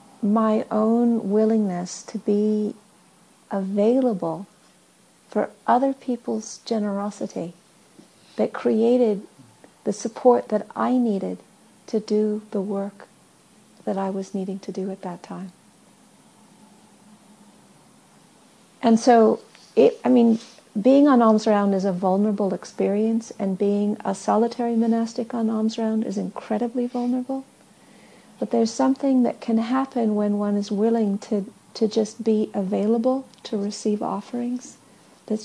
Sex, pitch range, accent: female, 205-235 Hz, American